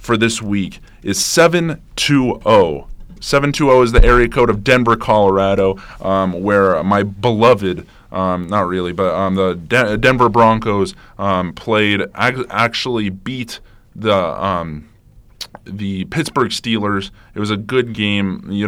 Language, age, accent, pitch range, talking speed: English, 20-39, American, 100-120 Hz, 125 wpm